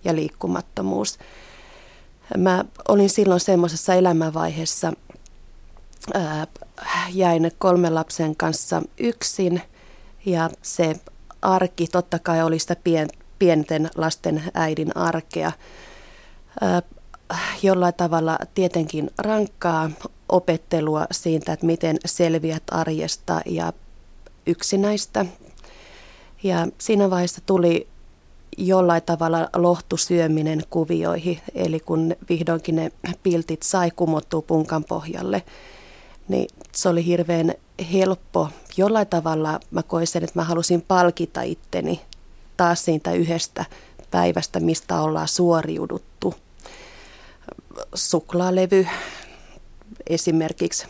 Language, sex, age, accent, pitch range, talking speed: Finnish, female, 30-49, native, 160-180 Hz, 90 wpm